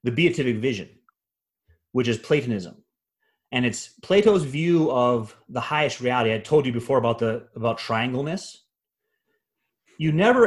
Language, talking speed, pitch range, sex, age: English, 140 wpm, 115-170 Hz, male, 30-49